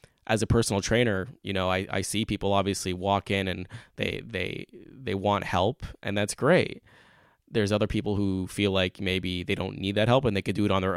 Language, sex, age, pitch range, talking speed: English, male, 20-39, 95-120 Hz, 225 wpm